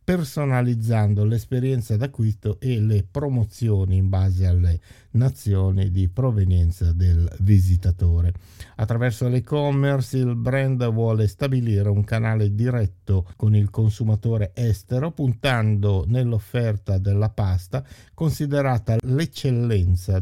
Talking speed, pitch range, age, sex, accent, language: 100 wpm, 95-125 Hz, 50-69, male, native, Italian